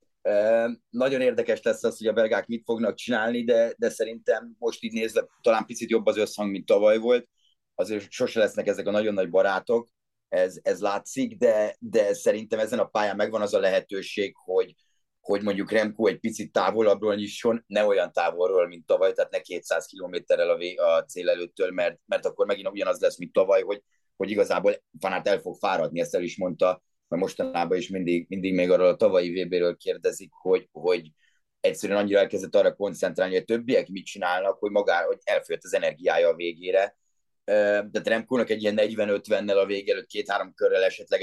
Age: 30-49